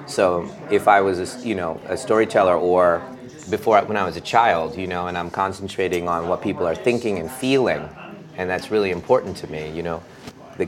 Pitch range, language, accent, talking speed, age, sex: 85-115 Hz, English, American, 200 wpm, 30-49, male